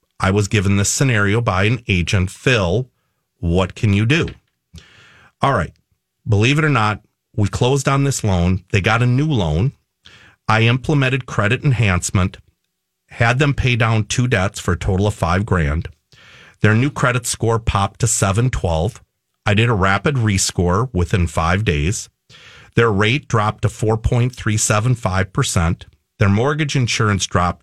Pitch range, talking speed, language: 95-120 Hz, 150 wpm, English